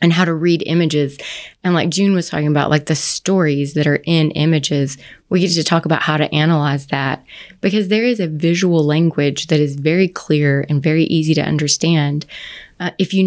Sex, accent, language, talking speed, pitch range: female, American, English, 215 wpm, 150-185 Hz